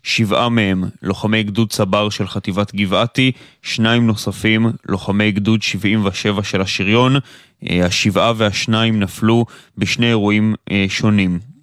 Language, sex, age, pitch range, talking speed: Hebrew, male, 20-39, 105-120 Hz, 110 wpm